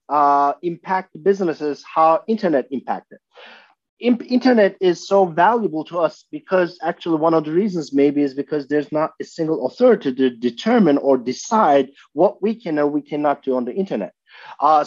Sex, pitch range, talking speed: male, 135-180 Hz, 165 wpm